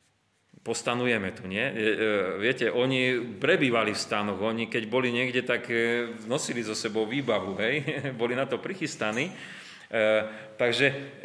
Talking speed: 125 wpm